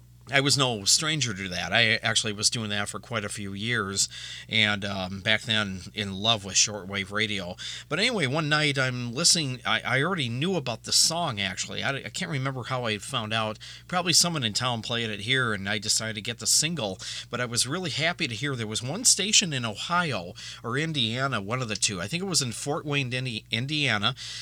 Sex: male